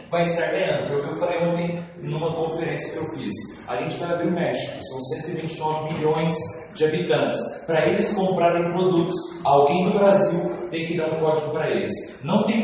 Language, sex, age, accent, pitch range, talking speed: English, male, 40-59, Brazilian, 155-195 Hz, 200 wpm